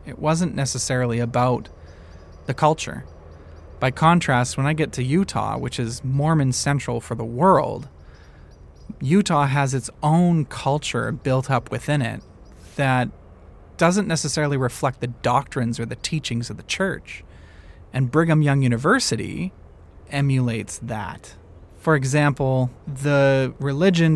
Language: English